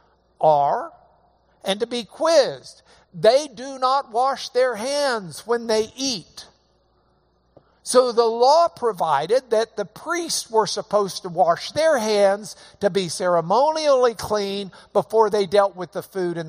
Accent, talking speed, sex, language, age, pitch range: American, 140 wpm, male, English, 60-79, 160-220 Hz